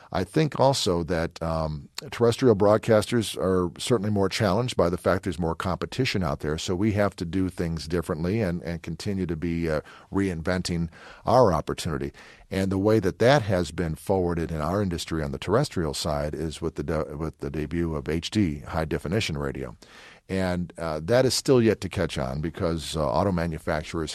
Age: 50-69